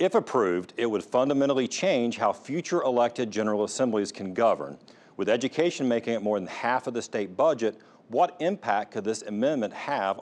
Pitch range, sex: 100-125 Hz, male